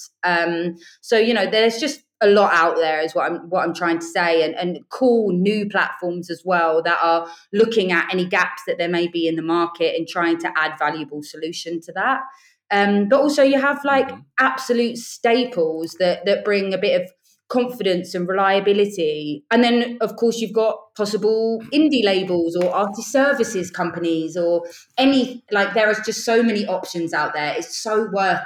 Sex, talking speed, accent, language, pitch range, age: female, 190 wpm, British, English, 170-235 Hz, 20-39